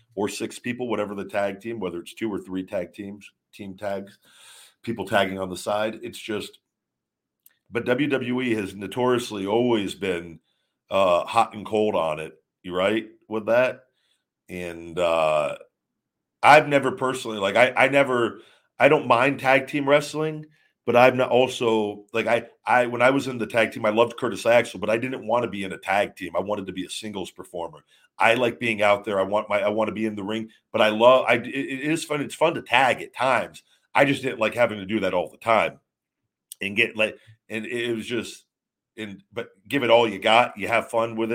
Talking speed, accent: 210 wpm, American